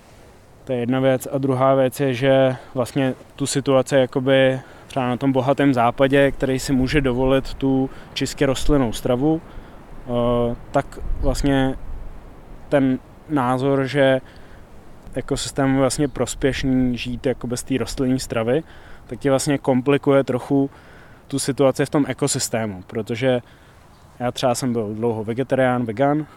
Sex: male